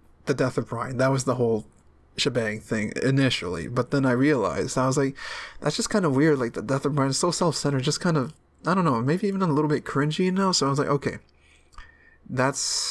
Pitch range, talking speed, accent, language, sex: 115-135 Hz, 235 wpm, American, English, male